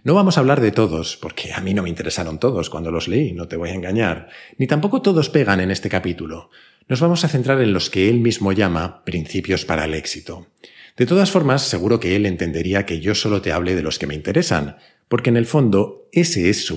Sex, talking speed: male, 235 wpm